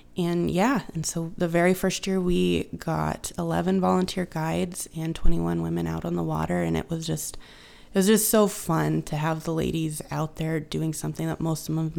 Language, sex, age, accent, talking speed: English, female, 20-39, American, 210 wpm